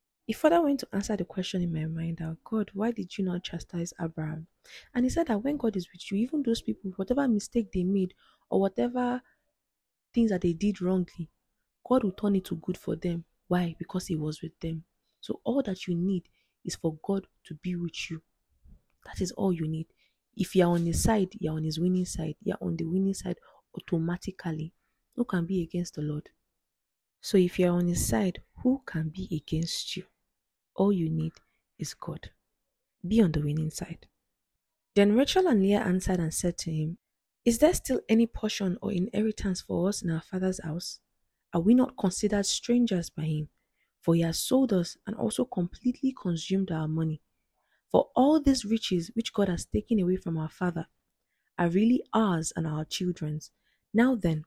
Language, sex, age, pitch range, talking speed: English, female, 20-39, 165-215 Hz, 195 wpm